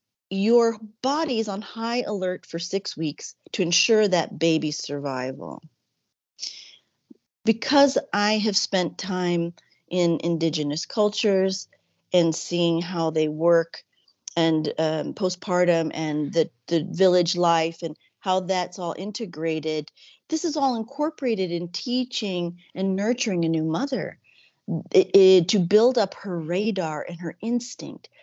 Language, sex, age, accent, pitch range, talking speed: English, female, 40-59, American, 160-205 Hz, 130 wpm